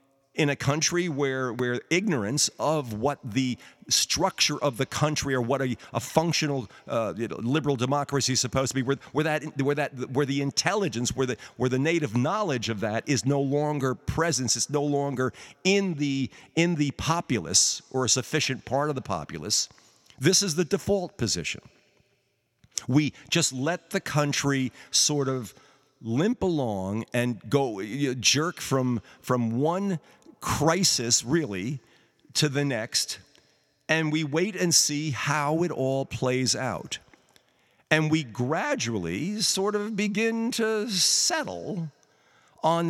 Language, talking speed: English, 150 wpm